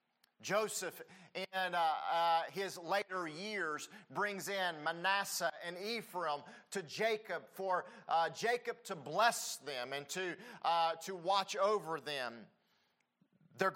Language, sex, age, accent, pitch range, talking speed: English, male, 40-59, American, 160-195 Hz, 120 wpm